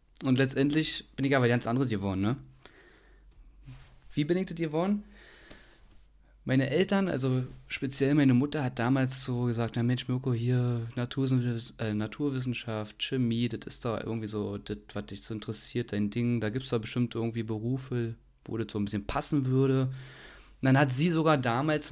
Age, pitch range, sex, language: 30-49, 110-140 Hz, male, German